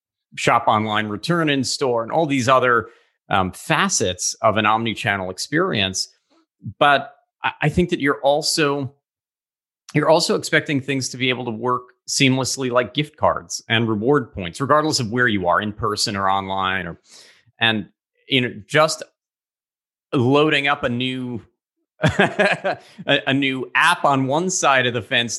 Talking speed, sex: 155 wpm, male